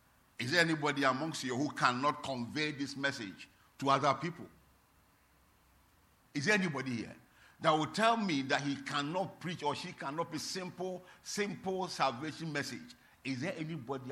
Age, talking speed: 50-69, 155 wpm